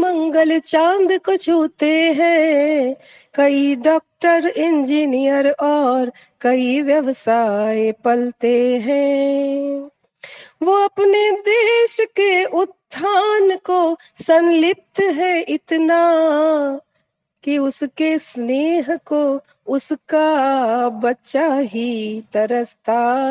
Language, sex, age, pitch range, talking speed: Hindi, female, 40-59, 255-325 Hz, 75 wpm